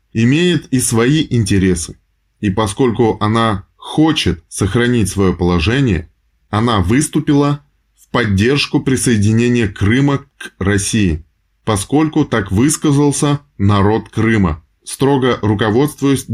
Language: Russian